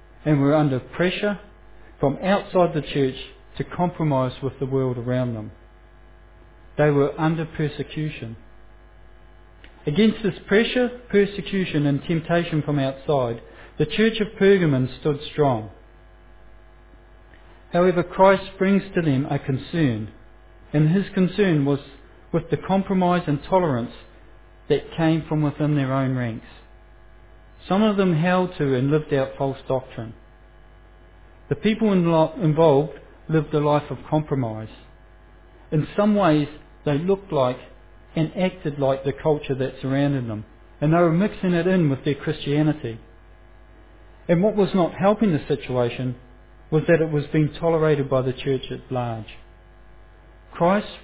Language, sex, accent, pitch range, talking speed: English, male, Australian, 115-170 Hz, 135 wpm